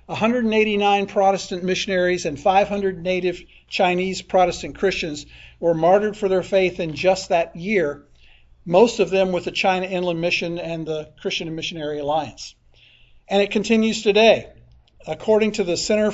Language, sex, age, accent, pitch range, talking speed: English, male, 50-69, American, 160-195 Hz, 145 wpm